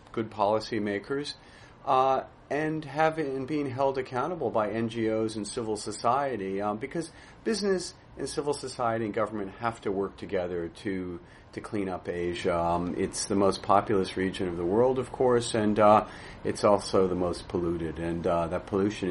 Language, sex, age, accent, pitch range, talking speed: English, male, 40-59, American, 95-115 Hz, 155 wpm